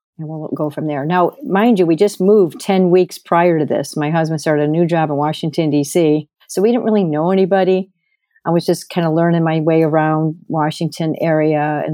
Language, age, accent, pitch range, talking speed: English, 50-69, American, 155-180 Hz, 215 wpm